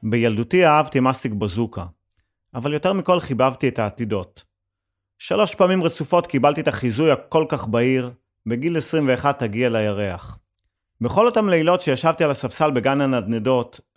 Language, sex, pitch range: Hebrew, male, 110-150 Hz